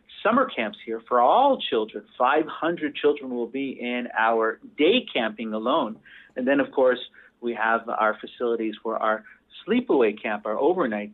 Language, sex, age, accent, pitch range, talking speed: English, male, 50-69, American, 120-155 Hz, 155 wpm